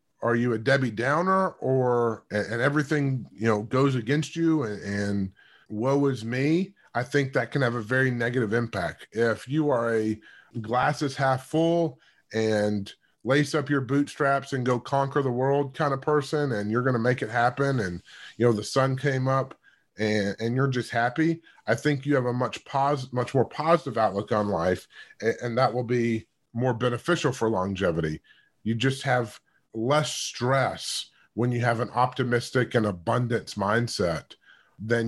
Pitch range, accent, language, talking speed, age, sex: 110-135 Hz, American, English, 175 wpm, 30-49, male